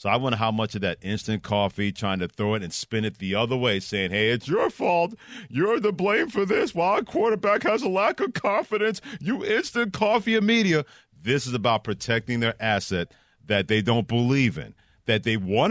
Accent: American